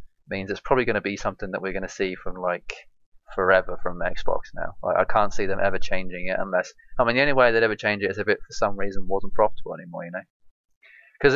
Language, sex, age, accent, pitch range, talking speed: English, male, 20-39, British, 95-115 Hz, 255 wpm